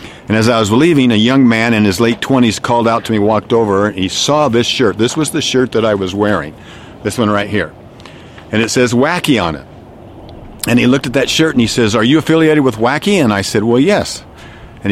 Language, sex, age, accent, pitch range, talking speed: English, male, 50-69, American, 95-125 Hz, 245 wpm